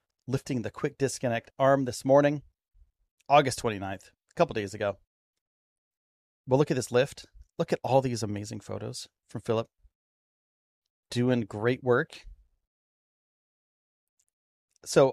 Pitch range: 100-130 Hz